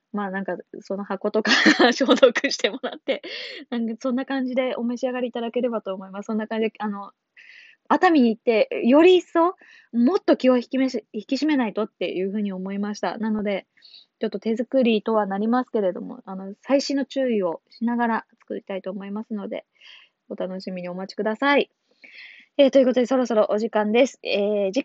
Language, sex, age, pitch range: Japanese, female, 20-39, 200-260 Hz